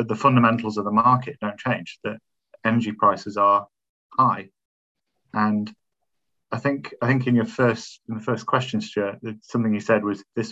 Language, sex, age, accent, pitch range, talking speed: English, male, 40-59, British, 105-115 Hz, 170 wpm